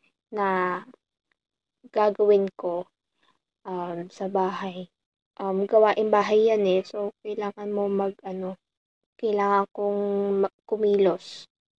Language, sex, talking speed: Filipino, female, 90 wpm